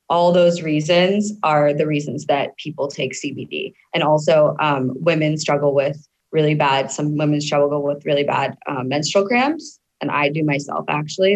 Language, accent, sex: English, American, female